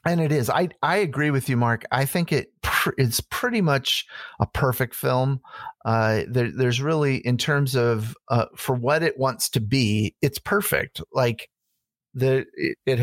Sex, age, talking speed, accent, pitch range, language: male, 40-59, 175 wpm, American, 115-140 Hz, English